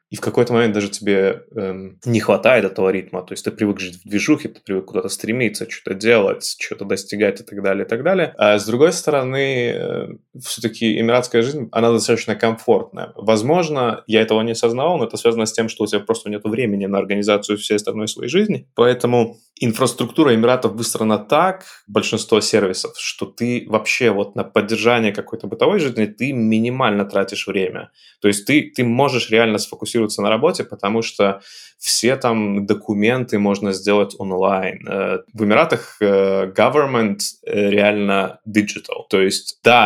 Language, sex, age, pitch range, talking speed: Russian, male, 20-39, 100-115 Hz, 165 wpm